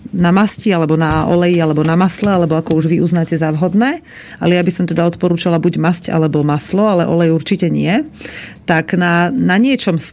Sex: female